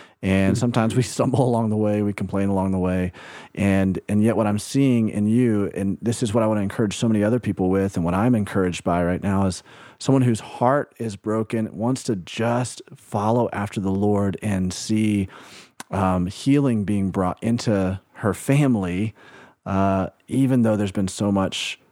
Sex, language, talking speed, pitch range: male, English, 190 wpm, 95-120 Hz